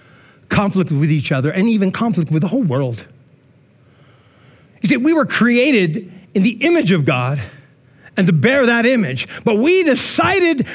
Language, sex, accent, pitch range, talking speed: English, male, American, 140-185 Hz, 160 wpm